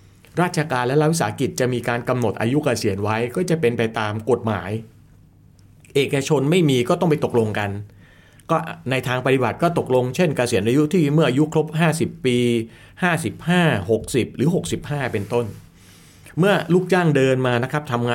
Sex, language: male, Thai